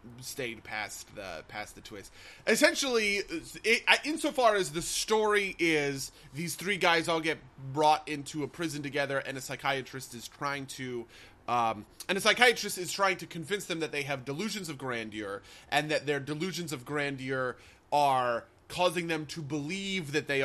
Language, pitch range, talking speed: English, 125-180 Hz, 165 wpm